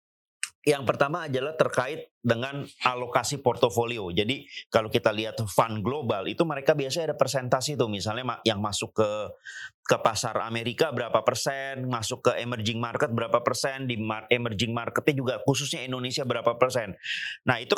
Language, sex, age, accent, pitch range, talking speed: Indonesian, male, 30-49, native, 120-155 Hz, 150 wpm